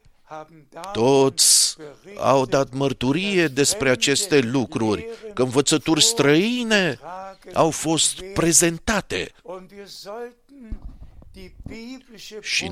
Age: 50-69